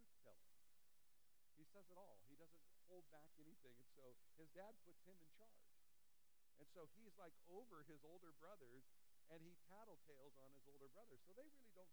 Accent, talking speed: American, 180 wpm